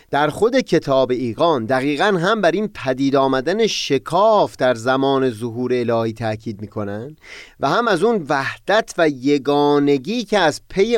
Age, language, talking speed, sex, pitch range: 30-49, Persian, 155 wpm, male, 120-165 Hz